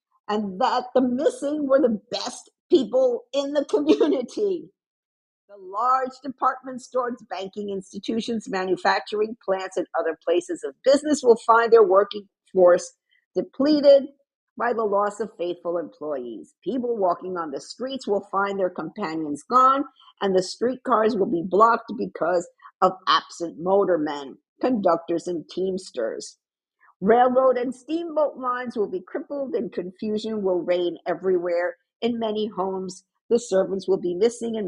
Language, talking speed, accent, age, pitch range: English, 140 wpm, American, 50-69, 185-260 Hz